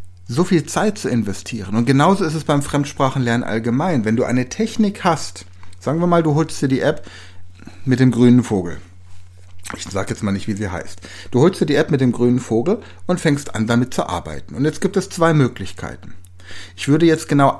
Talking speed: 210 wpm